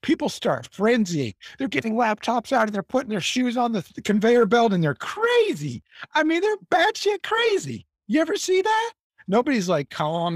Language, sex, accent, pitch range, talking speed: English, male, American, 125-205 Hz, 185 wpm